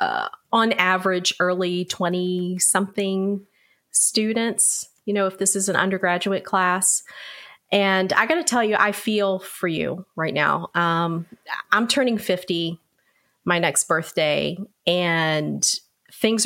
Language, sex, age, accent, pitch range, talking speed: English, female, 30-49, American, 160-195 Hz, 130 wpm